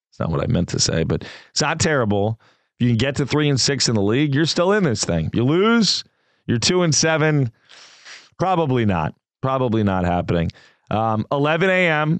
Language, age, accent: English, 30-49, American